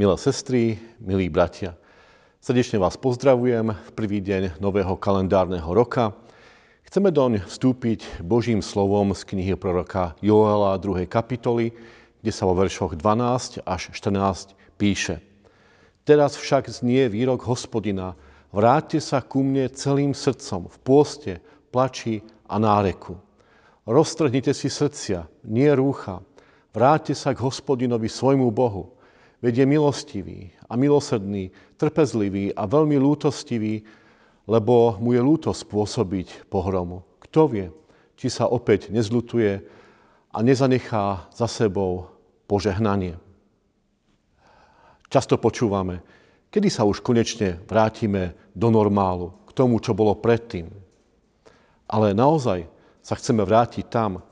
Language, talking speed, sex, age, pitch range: Slovak, 115 wpm, male, 50-69, 100-125 Hz